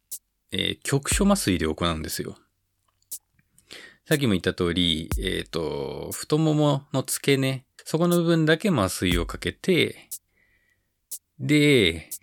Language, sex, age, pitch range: Japanese, male, 20-39, 90-130 Hz